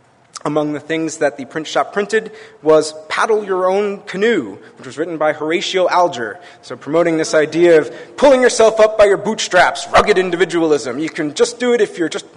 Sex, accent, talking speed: male, American, 195 wpm